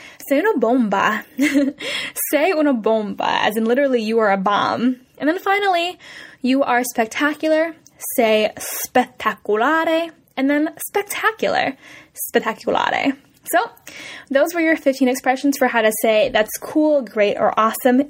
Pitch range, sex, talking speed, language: 220-305 Hz, female, 135 wpm, Italian